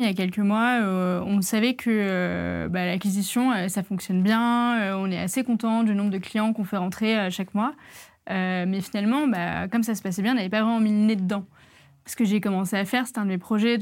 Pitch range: 190-220 Hz